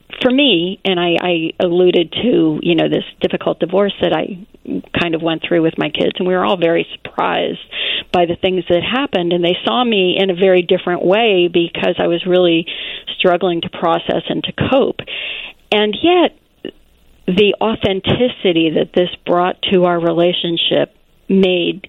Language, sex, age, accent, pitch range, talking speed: English, female, 40-59, American, 175-195 Hz, 170 wpm